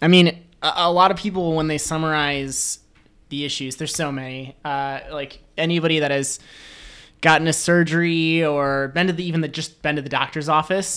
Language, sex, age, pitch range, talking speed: English, male, 20-39, 135-160 Hz, 185 wpm